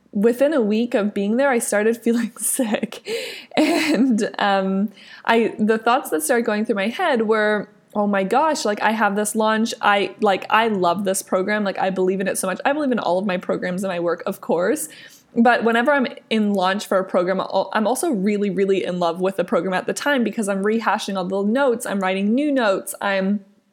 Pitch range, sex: 190-230 Hz, female